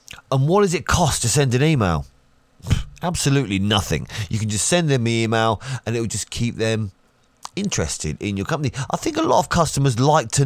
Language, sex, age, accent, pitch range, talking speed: English, male, 30-49, British, 105-150 Hz, 205 wpm